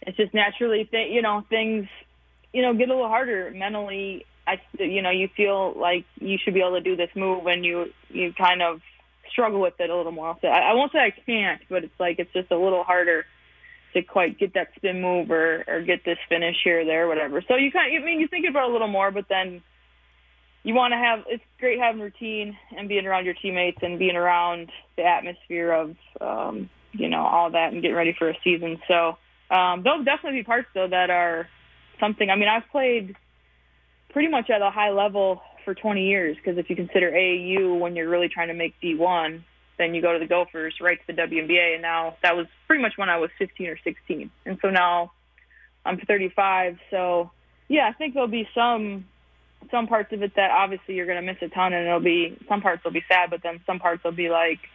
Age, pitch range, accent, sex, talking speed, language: 20-39, 170-210 Hz, American, female, 230 wpm, English